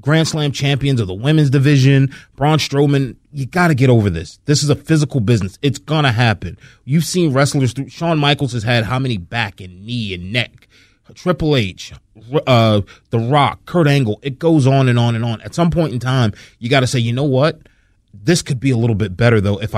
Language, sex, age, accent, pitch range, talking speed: English, male, 30-49, American, 110-140 Hz, 225 wpm